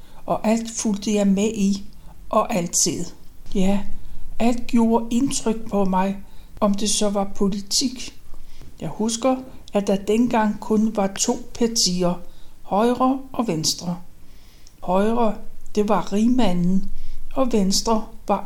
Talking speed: 125 wpm